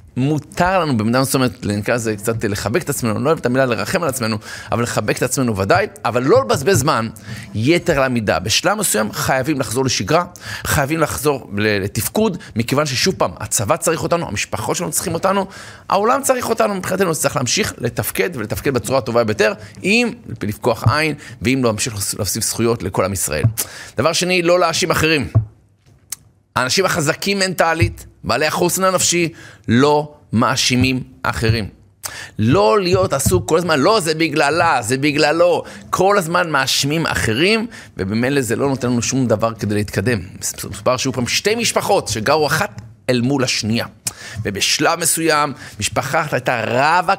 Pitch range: 110-160 Hz